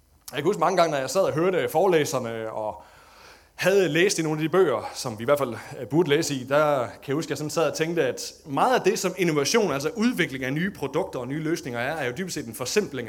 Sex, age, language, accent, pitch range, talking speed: male, 30-49, Danish, native, 135-205 Hz, 265 wpm